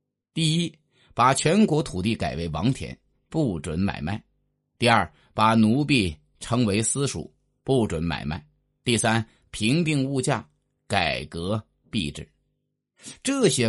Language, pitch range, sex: Chinese, 90-140 Hz, male